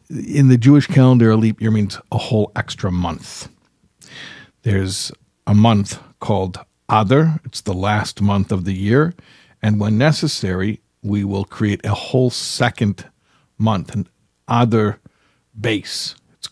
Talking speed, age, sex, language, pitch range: 140 wpm, 50-69, male, English, 100-120 Hz